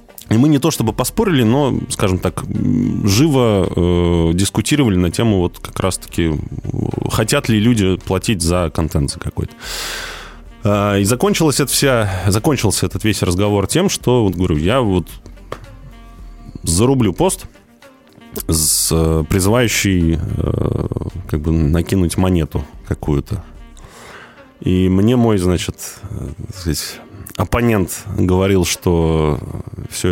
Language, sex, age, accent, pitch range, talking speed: Russian, male, 20-39, native, 85-115 Hz, 120 wpm